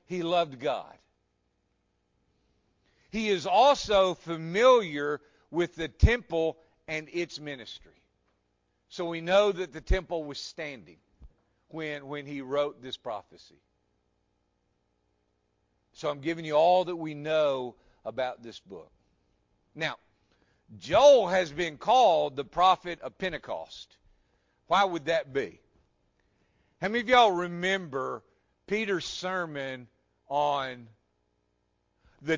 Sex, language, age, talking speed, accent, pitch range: male, English, 50-69, 115 wpm, American, 115-175 Hz